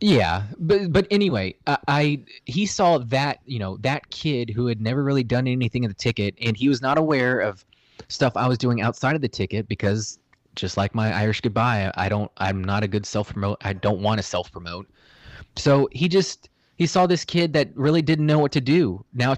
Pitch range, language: 100-130 Hz, English